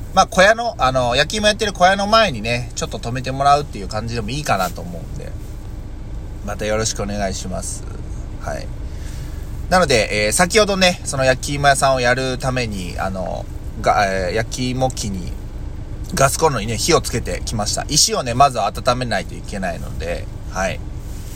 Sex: male